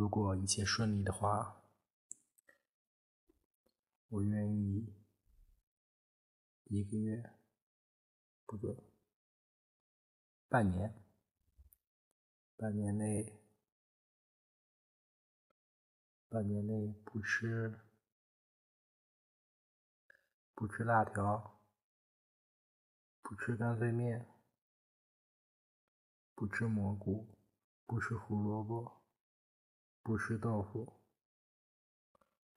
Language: Chinese